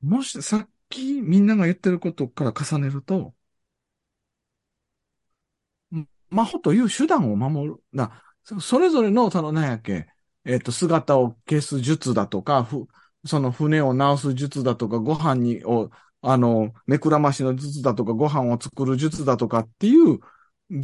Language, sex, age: Japanese, male, 40-59